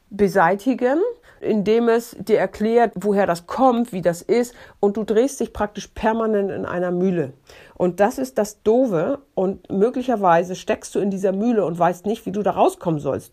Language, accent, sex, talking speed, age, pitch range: German, German, female, 180 wpm, 50-69, 180-245 Hz